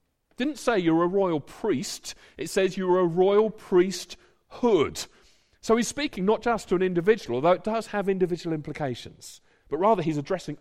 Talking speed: 170 wpm